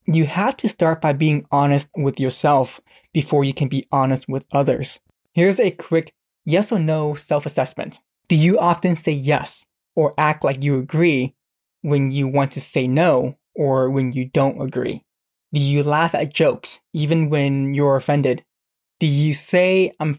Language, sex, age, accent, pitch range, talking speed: English, male, 20-39, American, 140-165 Hz, 170 wpm